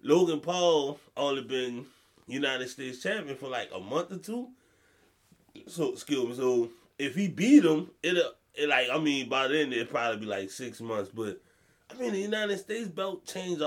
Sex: male